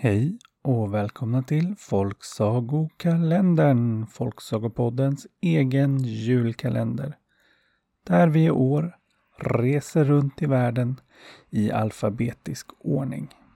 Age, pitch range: 30-49, 110-150 Hz